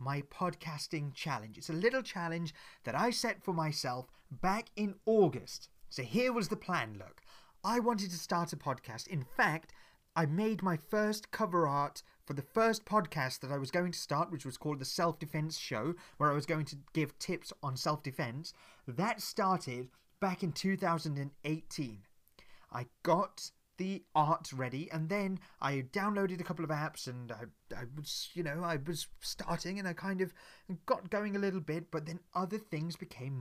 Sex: male